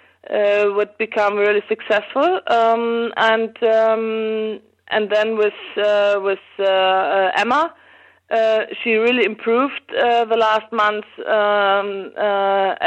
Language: English